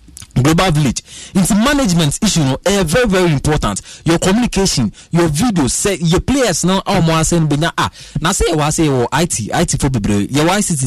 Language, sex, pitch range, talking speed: English, male, 140-195 Hz, 195 wpm